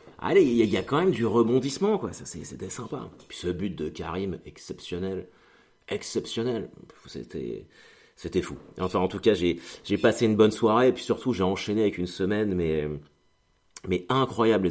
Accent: French